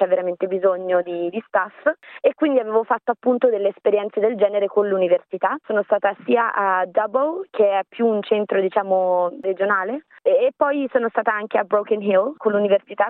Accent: native